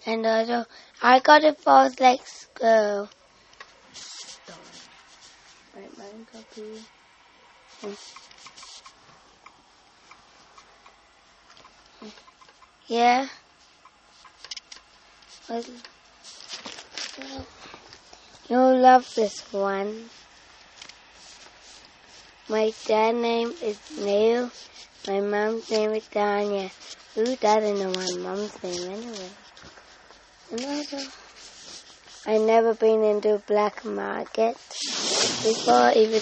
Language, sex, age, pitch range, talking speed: English, female, 20-39, 200-235 Hz, 65 wpm